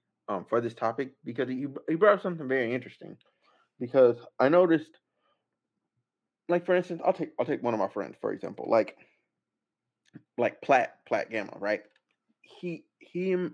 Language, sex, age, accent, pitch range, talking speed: English, male, 30-49, American, 110-145 Hz, 155 wpm